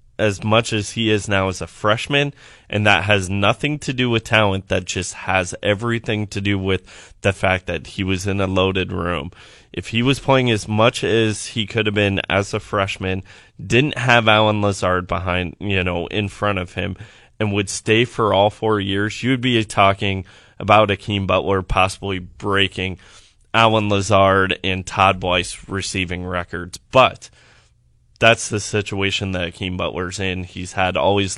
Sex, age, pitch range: male, 20-39, 95-115 Hz